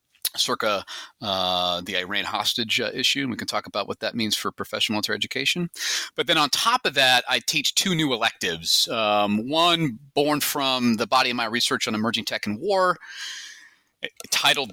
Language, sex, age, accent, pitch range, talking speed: English, male, 30-49, American, 105-135 Hz, 185 wpm